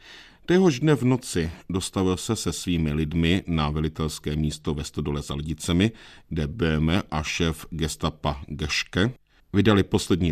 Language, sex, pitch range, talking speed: Czech, male, 80-95 Hz, 140 wpm